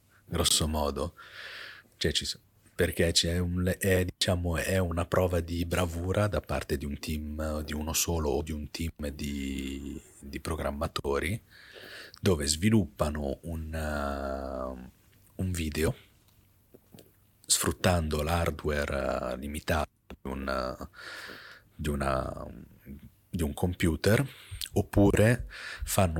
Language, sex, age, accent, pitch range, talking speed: Italian, male, 40-59, native, 75-95 Hz, 110 wpm